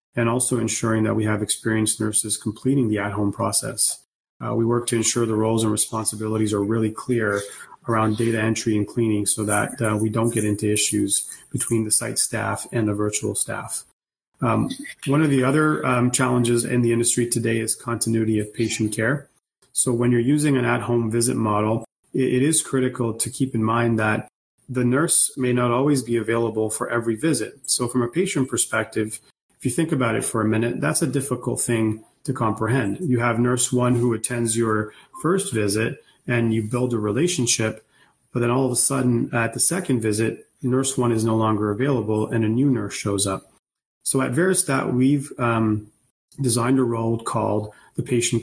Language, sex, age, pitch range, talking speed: English, male, 30-49, 110-125 Hz, 190 wpm